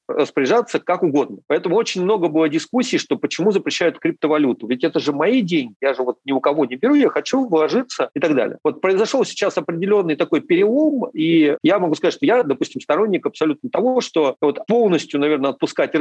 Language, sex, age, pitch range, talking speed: Russian, male, 40-59, 130-195 Hz, 195 wpm